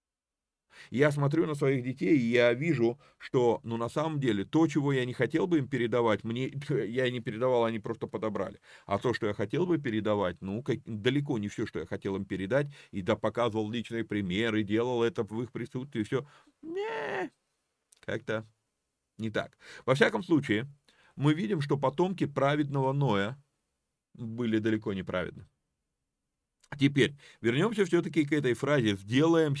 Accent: native